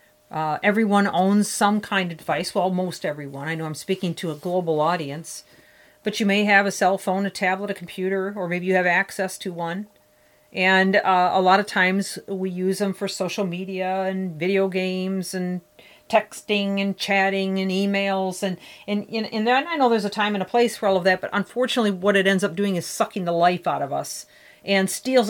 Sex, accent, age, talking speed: female, American, 40-59, 205 wpm